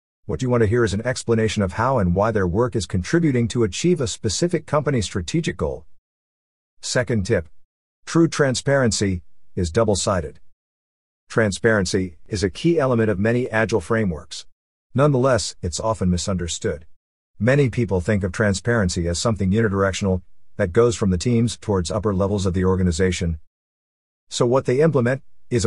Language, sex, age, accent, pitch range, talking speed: English, male, 50-69, American, 90-120 Hz, 155 wpm